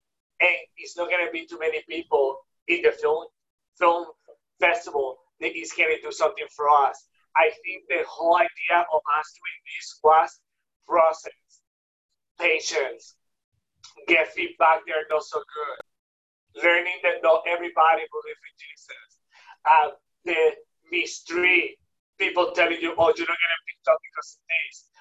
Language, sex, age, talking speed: English, male, 30-49, 155 wpm